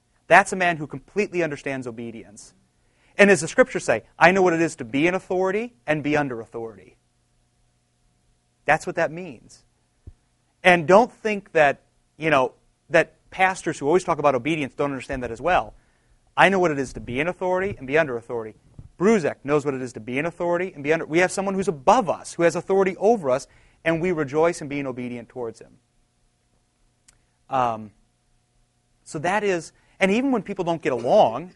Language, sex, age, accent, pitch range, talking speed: English, male, 30-49, American, 120-180 Hz, 195 wpm